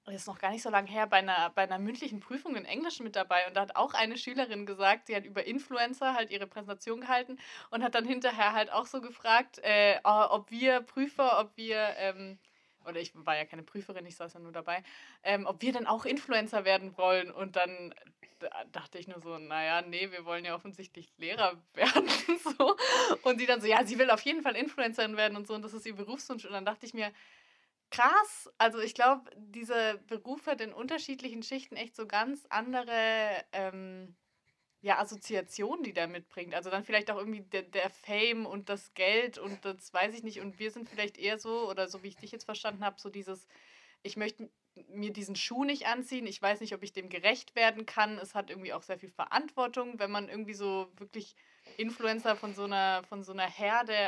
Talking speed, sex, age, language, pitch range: 215 wpm, female, 20-39, German, 195-235 Hz